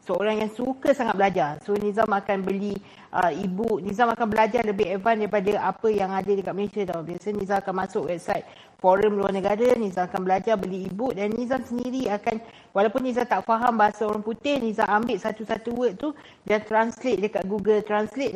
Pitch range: 195-220 Hz